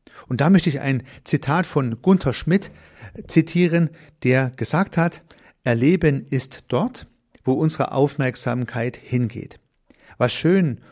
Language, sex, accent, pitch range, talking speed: German, male, German, 120-155 Hz, 120 wpm